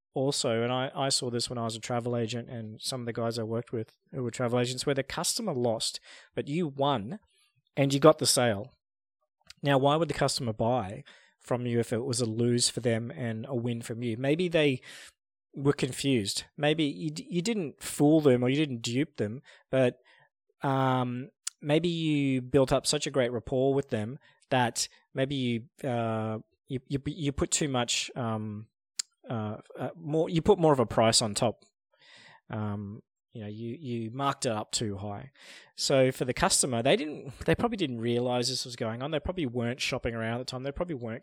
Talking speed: 200 wpm